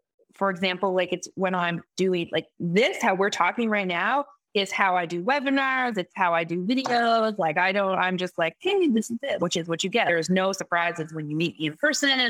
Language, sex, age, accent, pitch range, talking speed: English, female, 30-49, American, 180-235 Hz, 230 wpm